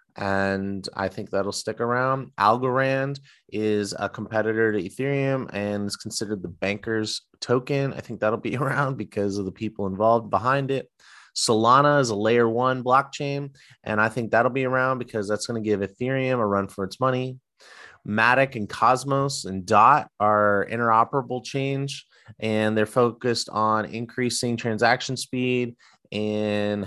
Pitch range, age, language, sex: 100-120 Hz, 30-49, English, male